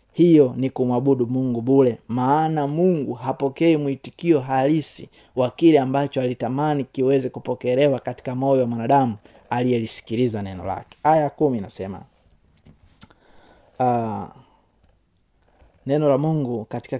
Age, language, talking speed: 30-49, Swahili, 105 wpm